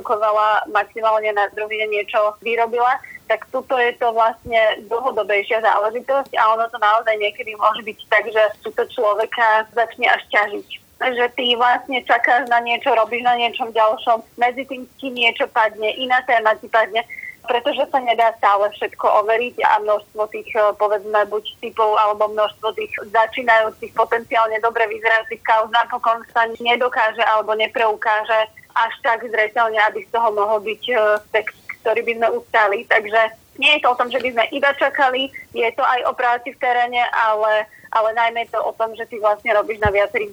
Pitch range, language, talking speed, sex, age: 215-245 Hz, Slovak, 165 wpm, female, 20-39